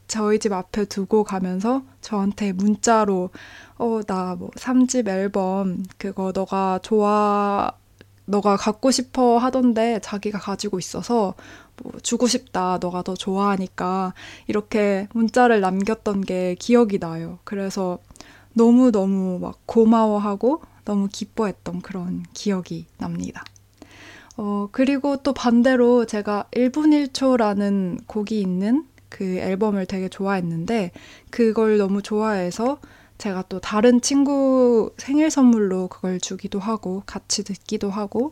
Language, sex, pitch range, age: Korean, female, 185-230 Hz, 20-39